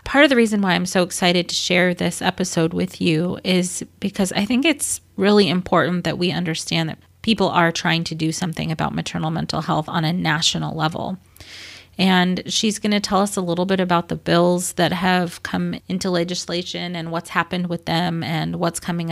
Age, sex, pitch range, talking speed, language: 30-49, female, 165-185 Hz, 200 wpm, English